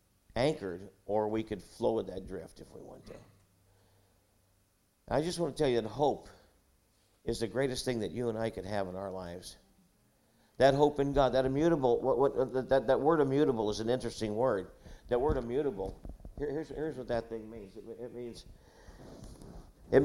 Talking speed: 190 wpm